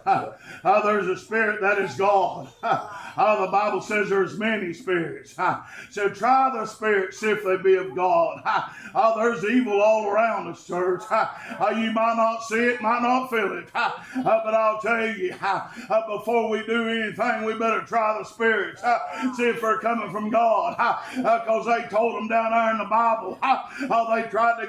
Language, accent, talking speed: English, American, 190 wpm